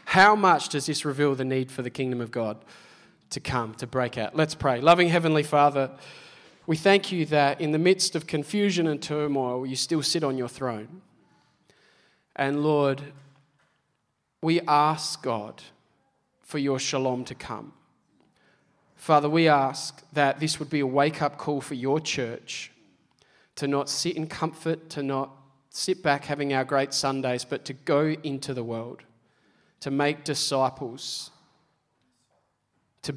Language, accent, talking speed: English, Australian, 155 wpm